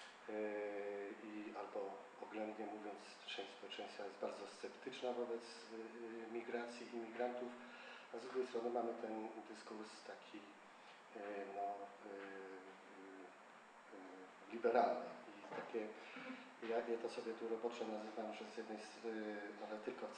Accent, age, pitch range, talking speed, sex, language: native, 40-59, 105-115 Hz, 115 wpm, male, Polish